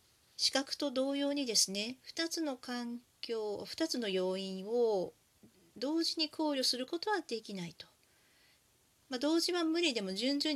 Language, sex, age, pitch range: Japanese, female, 40-59, 205-300 Hz